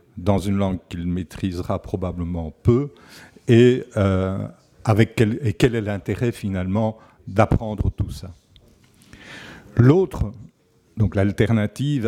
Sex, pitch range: male, 105-135 Hz